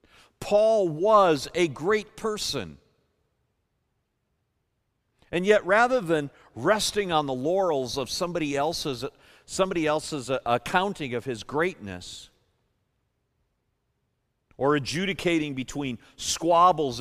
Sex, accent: male, American